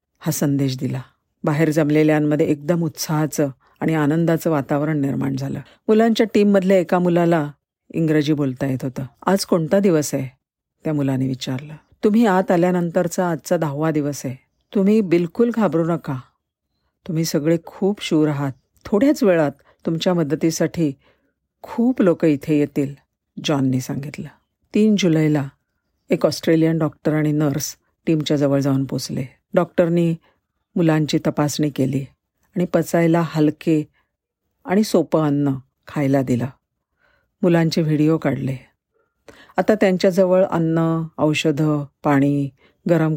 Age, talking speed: 50-69, 115 wpm